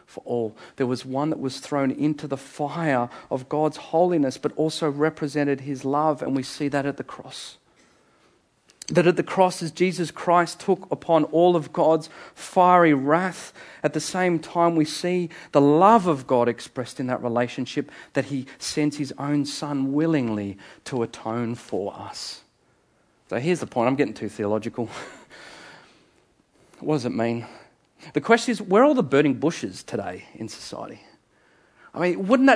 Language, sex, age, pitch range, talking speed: English, male, 40-59, 135-175 Hz, 170 wpm